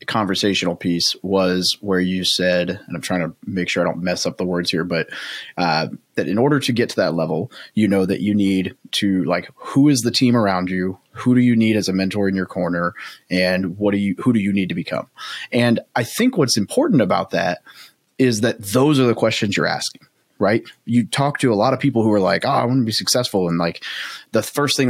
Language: English